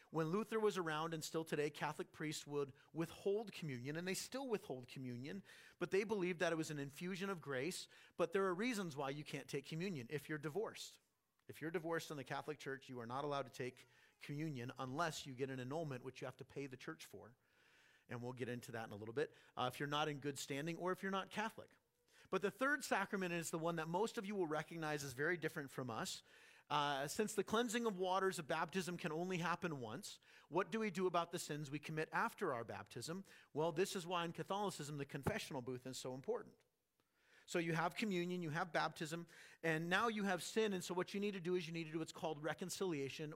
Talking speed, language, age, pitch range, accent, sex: 230 wpm, English, 40-59, 145-190 Hz, American, male